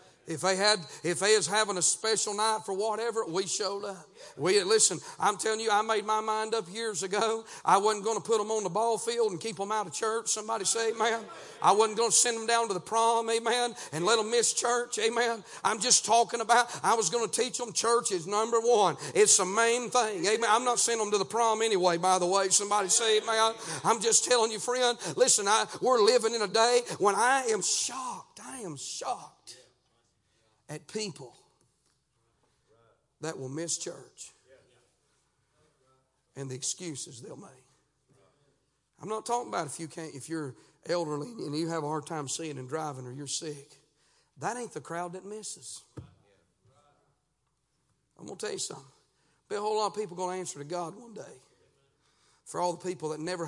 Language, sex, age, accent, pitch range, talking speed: English, male, 50-69, American, 150-225 Hz, 200 wpm